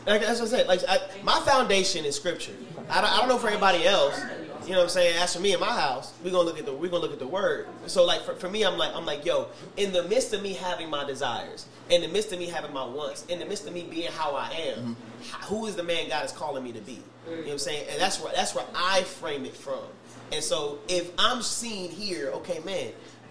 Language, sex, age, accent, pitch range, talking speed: English, male, 30-49, American, 140-200 Hz, 280 wpm